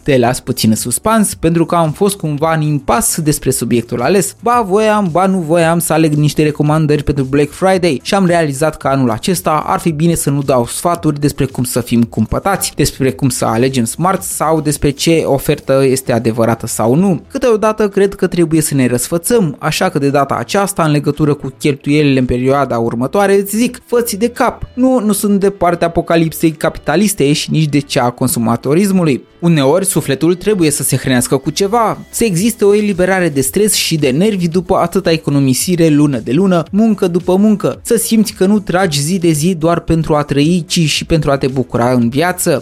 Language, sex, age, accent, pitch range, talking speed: Romanian, male, 20-39, native, 140-185 Hz, 195 wpm